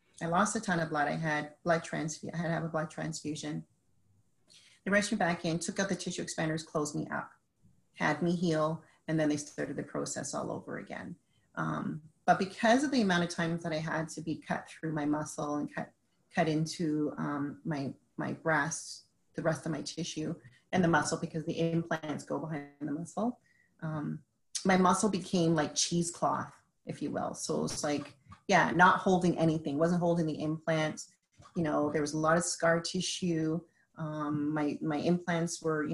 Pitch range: 150-170 Hz